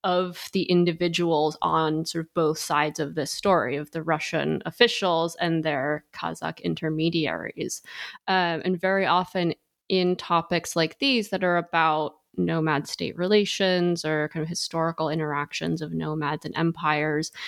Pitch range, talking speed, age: 160-190 Hz, 145 wpm, 20-39